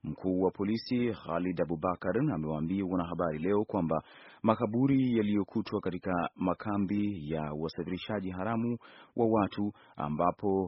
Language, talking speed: Swahili, 110 wpm